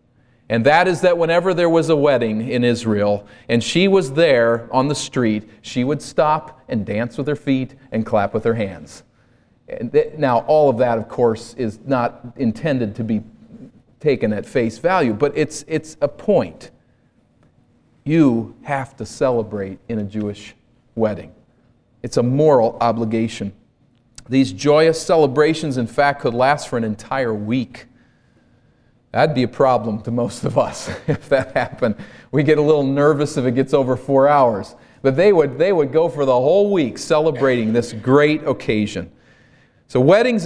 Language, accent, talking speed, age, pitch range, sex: English, American, 165 wpm, 40-59, 115-160 Hz, male